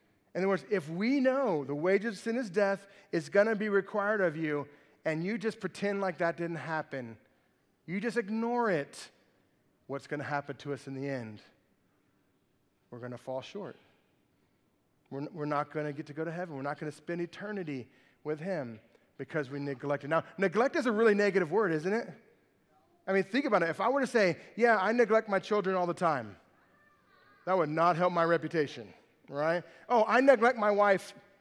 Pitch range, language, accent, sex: 160-220 Hz, English, American, male